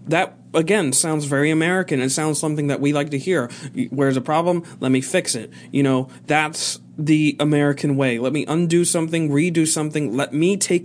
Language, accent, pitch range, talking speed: English, American, 130-185 Hz, 195 wpm